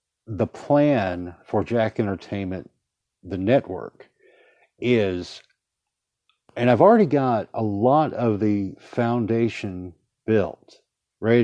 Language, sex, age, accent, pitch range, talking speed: English, male, 50-69, American, 105-140 Hz, 100 wpm